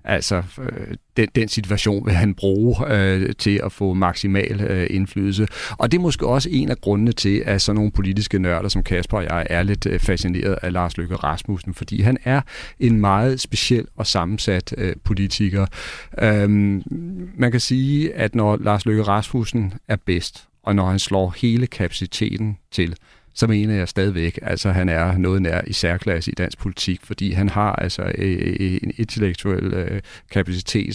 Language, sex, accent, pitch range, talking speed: Danish, male, native, 95-110 Hz, 175 wpm